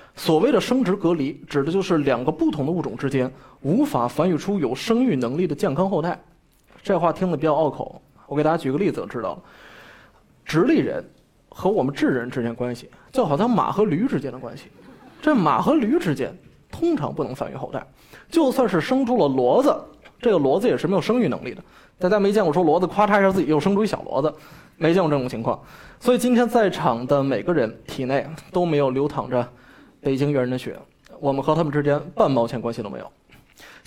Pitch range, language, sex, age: 140-205 Hz, Chinese, male, 20-39